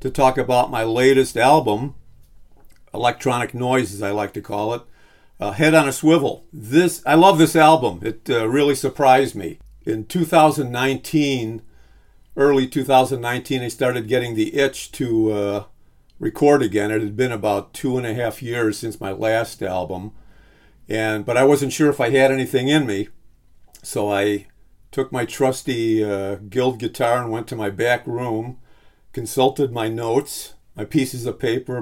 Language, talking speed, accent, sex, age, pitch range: English, 165 wpm, American, male, 50-69, 110-135 Hz